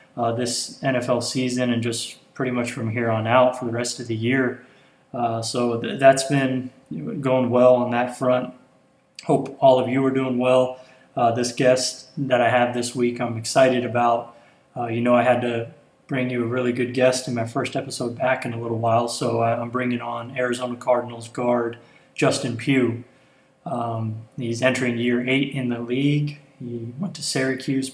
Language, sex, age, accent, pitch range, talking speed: English, male, 20-39, American, 120-130 Hz, 185 wpm